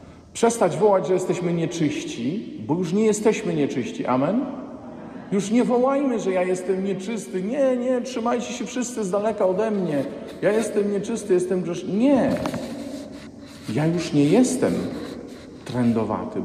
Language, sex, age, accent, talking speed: Polish, male, 50-69, native, 140 wpm